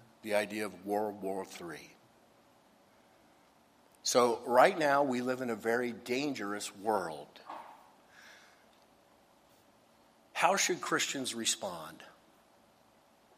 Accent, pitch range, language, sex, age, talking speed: American, 110-140 Hz, English, male, 50-69, 90 wpm